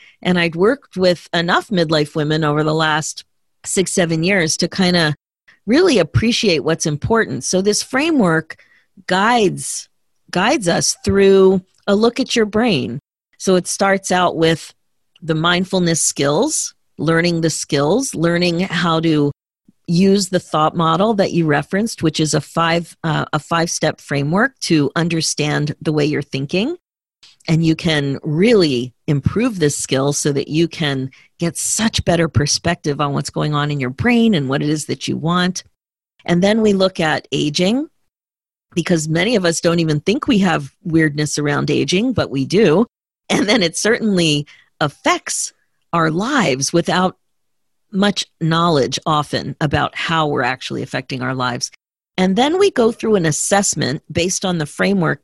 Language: English